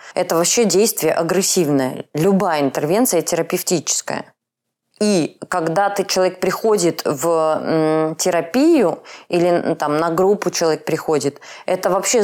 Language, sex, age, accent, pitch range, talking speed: Russian, female, 20-39, native, 165-210 Hz, 110 wpm